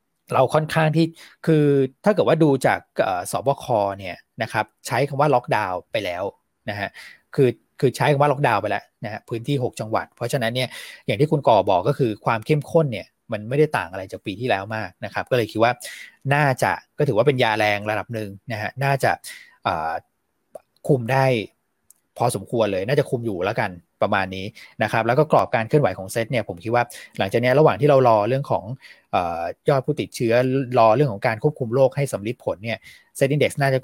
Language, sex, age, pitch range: Thai, male, 20-39, 110-140 Hz